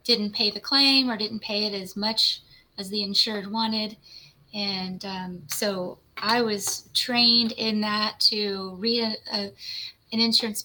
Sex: female